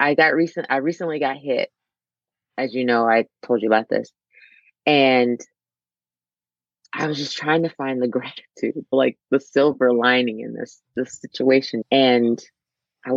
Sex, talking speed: female, 155 wpm